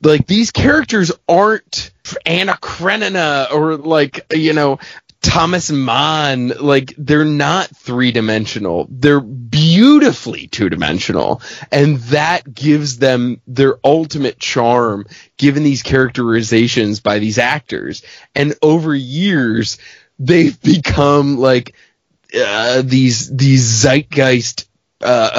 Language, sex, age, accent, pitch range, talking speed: English, male, 20-39, American, 125-165 Hz, 100 wpm